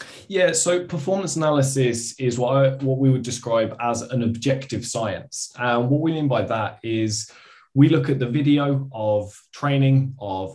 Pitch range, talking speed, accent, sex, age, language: 105-135 Hz, 170 wpm, British, male, 20-39, English